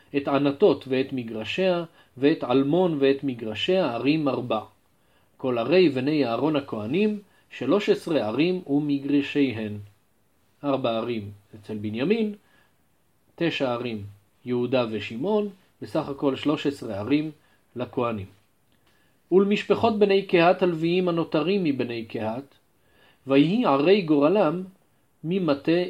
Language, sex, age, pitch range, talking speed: Hebrew, male, 40-59, 125-170 Hz, 100 wpm